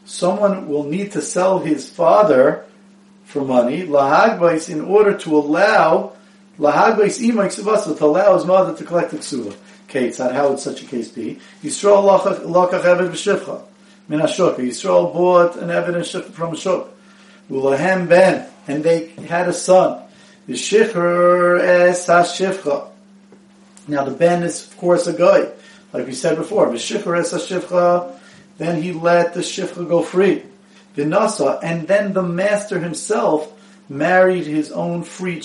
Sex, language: male, English